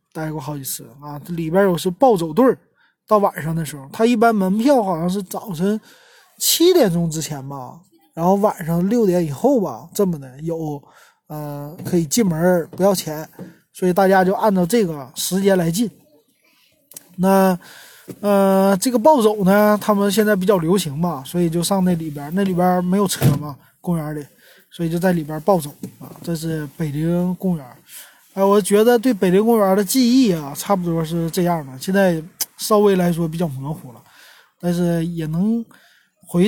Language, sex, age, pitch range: Chinese, male, 20-39, 160-200 Hz